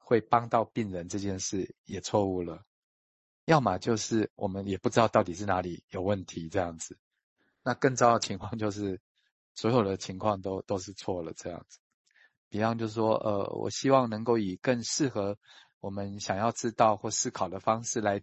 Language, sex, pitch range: Chinese, male, 95-120 Hz